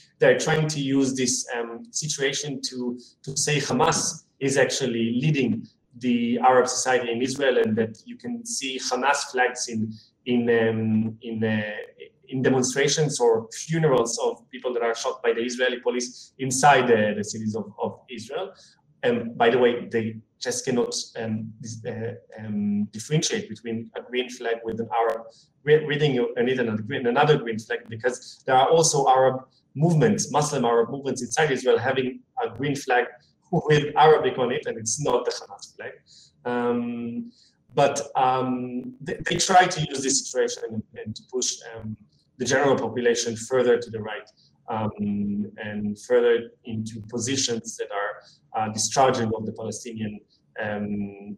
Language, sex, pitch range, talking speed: English, male, 115-150 Hz, 160 wpm